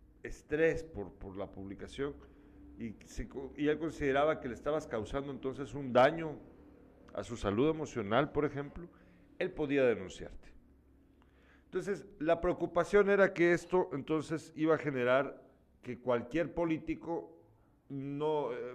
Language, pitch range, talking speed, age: Spanish, 115-165 Hz, 130 wpm, 50-69